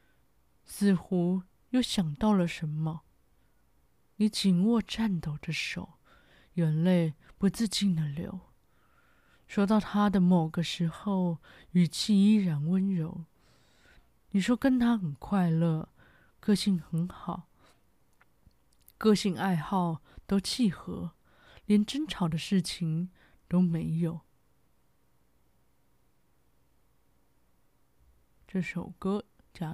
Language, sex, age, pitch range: Chinese, female, 20-39, 160-200 Hz